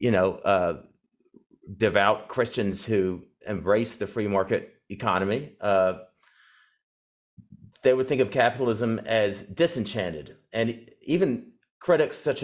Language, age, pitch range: English, 40-59, 105-120 Hz